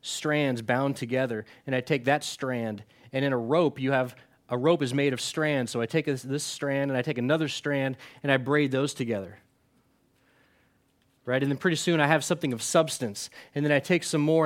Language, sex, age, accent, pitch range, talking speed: English, male, 20-39, American, 140-200 Hz, 215 wpm